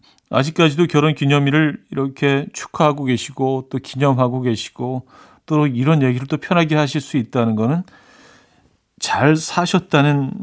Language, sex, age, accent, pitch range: Korean, male, 40-59, native, 120-150 Hz